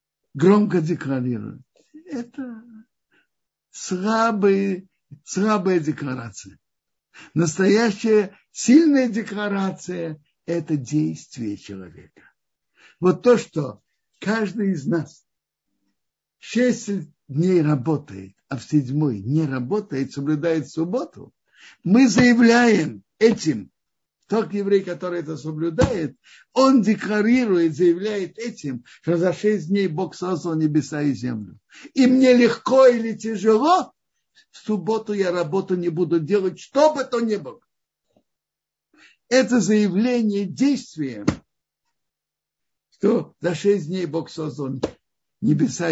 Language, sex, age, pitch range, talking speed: Russian, male, 60-79, 150-215 Hz, 105 wpm